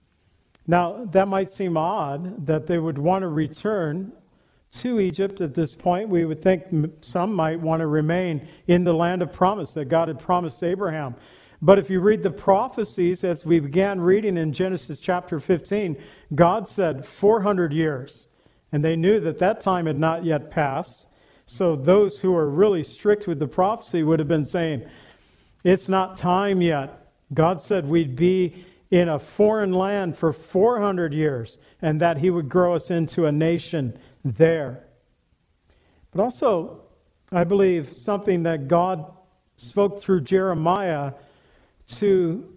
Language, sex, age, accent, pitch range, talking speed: English, male, 50-69, American, 155-185 Hz, 155 wpm